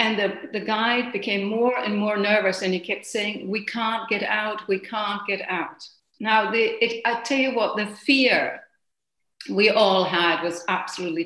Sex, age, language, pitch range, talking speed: female, 70-89, English, 205-265 Hz, 175 wpm